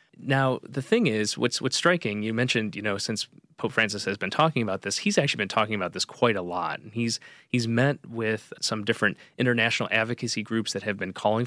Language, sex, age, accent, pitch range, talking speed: English, male, 30-49, American, 105-125 Hz, 220 wpm